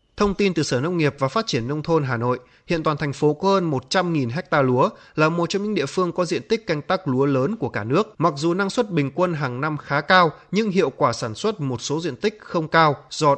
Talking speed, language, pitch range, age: 270 wpm, Vietnamese, 135-180 Hz, 20-39